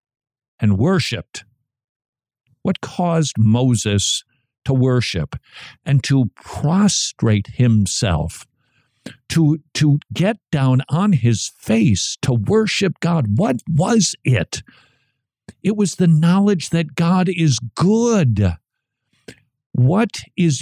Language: English